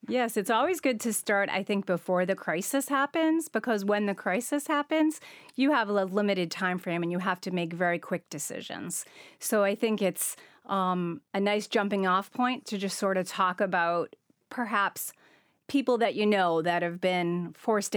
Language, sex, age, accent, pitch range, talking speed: English, female, 30-49, American, 180-235 Hz, 185 wpm